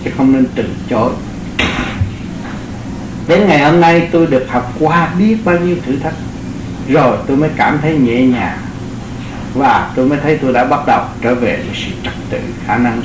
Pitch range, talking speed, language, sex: 120-175 Hz, 190 wpm, Vietnamese, male